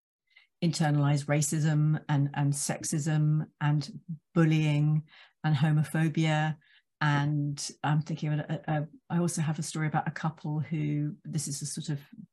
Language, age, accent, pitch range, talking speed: English, 50-69, British, 145-165 Hz, 125 wpm